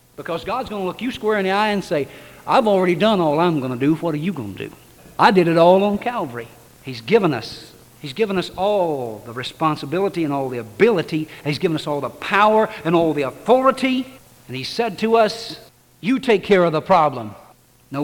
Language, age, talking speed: English, 60-79, 225 wpm